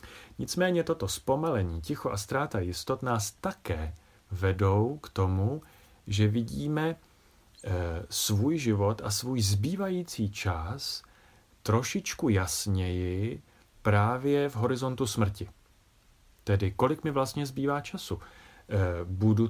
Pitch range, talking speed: 95-125 Hz, 100 wpm